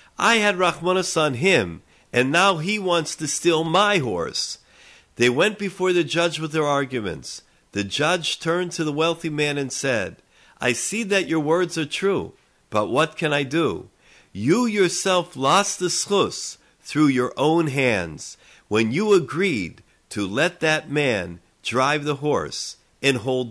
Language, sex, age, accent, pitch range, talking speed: English, male, 50-69, American, 130-180 Hz, 160 wpm